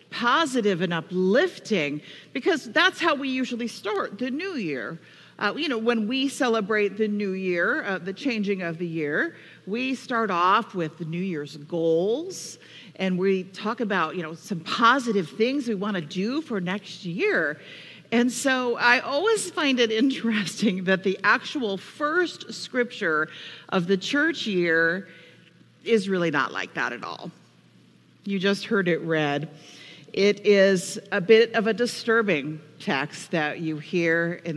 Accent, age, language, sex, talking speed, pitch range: American, 50-69, English, female, 160 wpm, 165-230 Hz